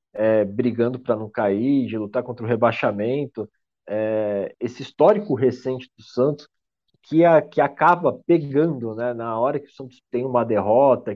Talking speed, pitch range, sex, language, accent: 160 wpm, 110-145 Hz, male, Portuguese, Brazilian